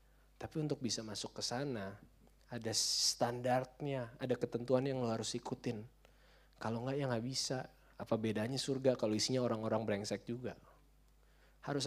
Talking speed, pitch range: 140 wpm, 100-120 Hz